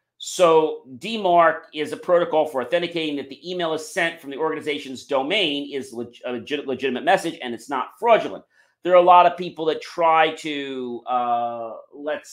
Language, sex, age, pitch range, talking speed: English, male, 40-59, 125-175 Hz, 170 wpm